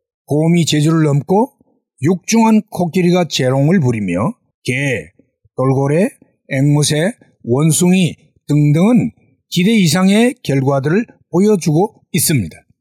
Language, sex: Korean, male